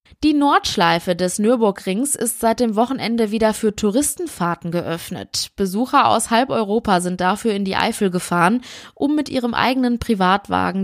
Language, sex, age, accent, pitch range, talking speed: German, female, 20-39, German, 185-240 Hz, 150 wpm